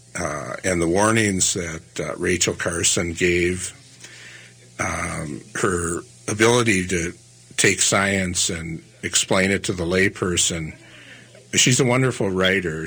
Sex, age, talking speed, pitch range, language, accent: male, 60-79, 115 wpm, 80-100 Hz, English, American